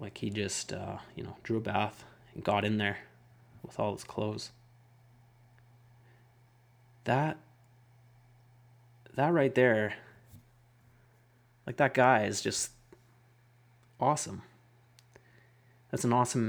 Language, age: English, 30-49